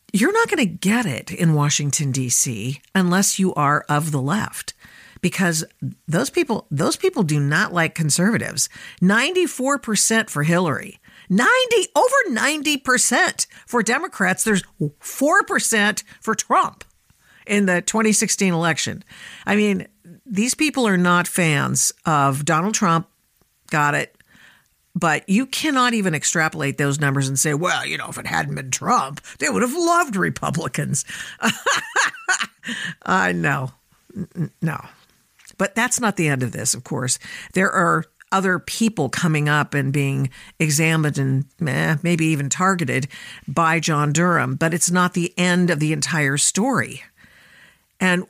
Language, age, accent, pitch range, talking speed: English, 50-69, American, 150-215 Hz, 145 wpm